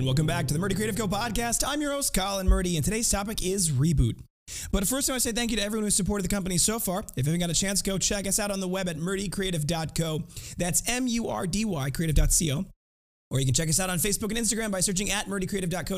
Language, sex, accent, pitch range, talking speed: English, male, American, 140-195 Hz, 250 wpm